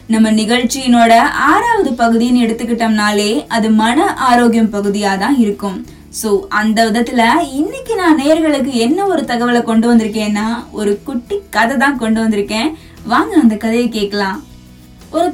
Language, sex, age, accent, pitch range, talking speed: Tamil, female, 20-39, native, 225-310 Hz, 125 wpm